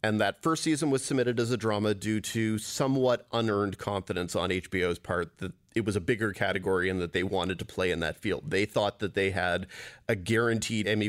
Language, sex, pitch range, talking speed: English, male, 100-125 Hz, 215 wpm